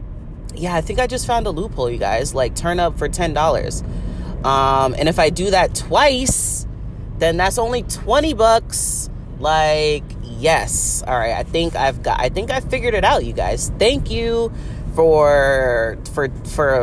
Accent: American